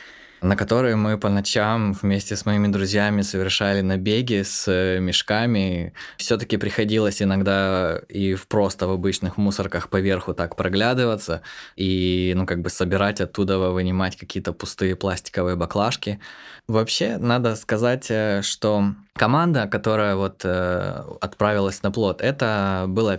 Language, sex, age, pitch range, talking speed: Ukrainian, male, 20-39, 95-110 Hz, 120 wpm